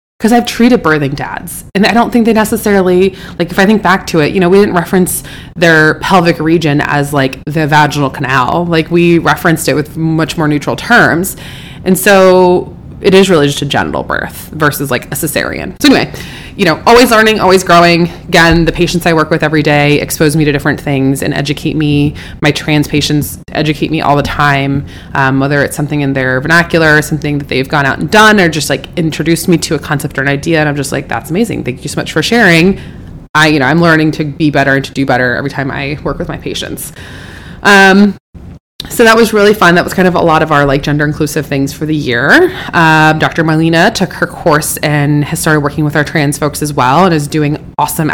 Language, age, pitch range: English, 20-39, 145-175 Hz